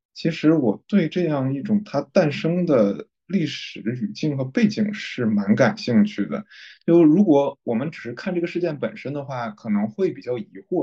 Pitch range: 110-175 Hz